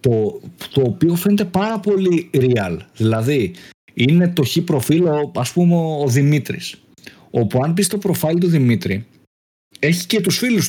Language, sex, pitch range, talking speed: Greek, male, 130-185 Hz, 150 wpm